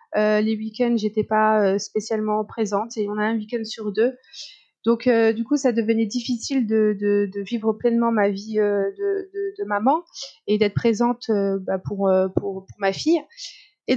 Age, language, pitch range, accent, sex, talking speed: 30-49, French, 205-250 Hz, French, female, 200 wpm